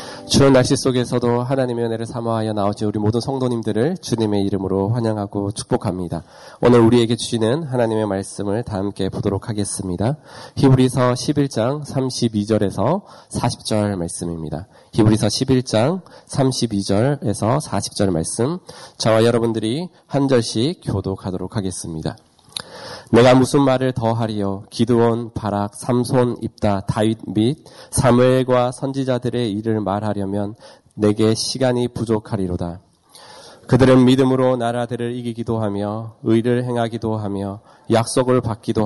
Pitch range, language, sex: 105-125 Hz, Korean, male